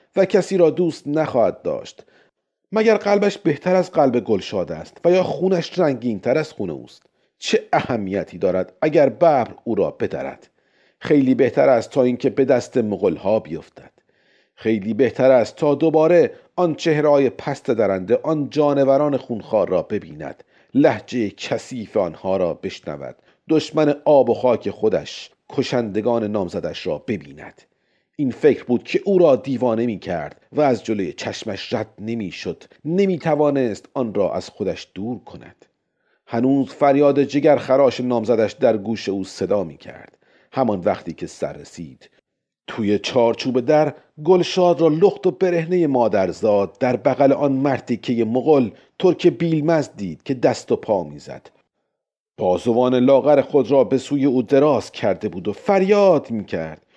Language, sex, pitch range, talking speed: Persian, male, 120-165 Hz, 150 wpm